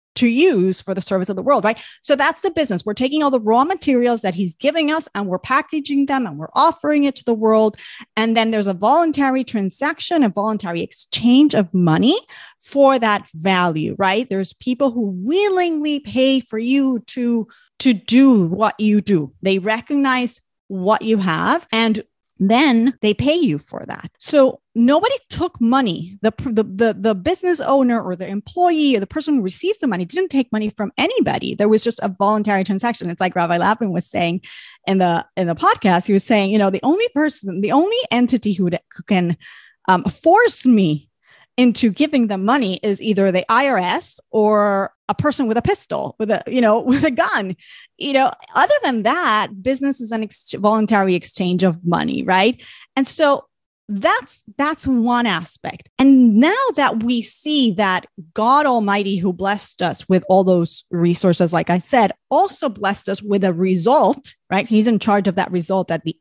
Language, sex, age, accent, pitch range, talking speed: English, female, 30-49, American, 195-270 Hz, 190 wpm